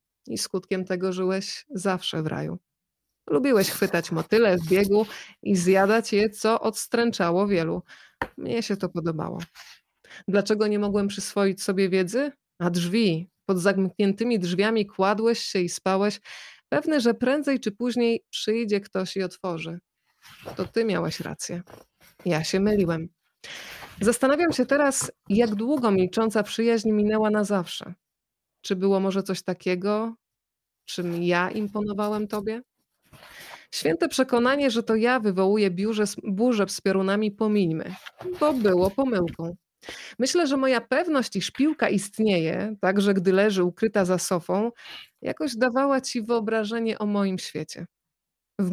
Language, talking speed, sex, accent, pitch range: Polish, 130 wpm, female, native, 185-225 Hz